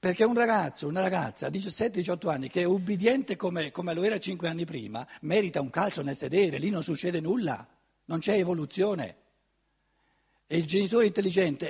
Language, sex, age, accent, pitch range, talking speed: Italian, male, 60-79, native, 145-205 Hz, 175 wpm